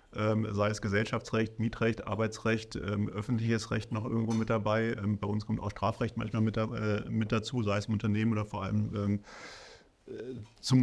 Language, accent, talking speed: German, German, 155 wpm